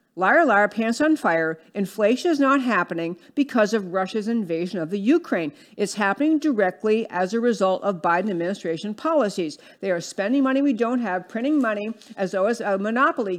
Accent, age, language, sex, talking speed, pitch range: American, 50-69, English, female, 180 wpm, 180-240 Hz